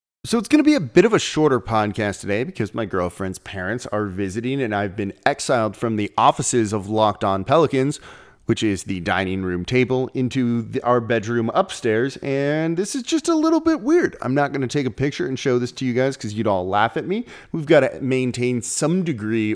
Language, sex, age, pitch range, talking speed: English, male, 30-49, 110-145 Hz, 220 wpm